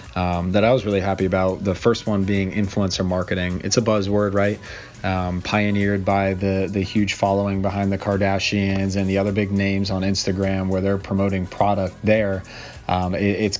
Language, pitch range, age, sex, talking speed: English, 95-105 Hz, 30-49, male, 180 wpm